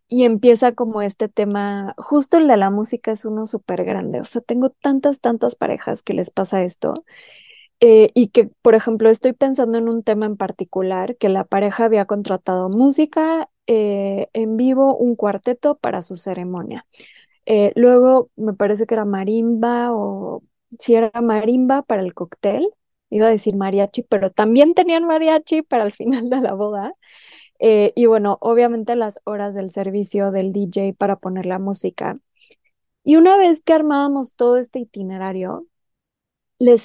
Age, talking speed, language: 20-39, 165 wpm, Spanish